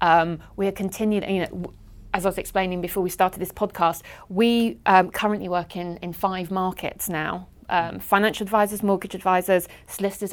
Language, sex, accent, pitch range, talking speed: English, female, British, 175-205 Hz, 175 wpm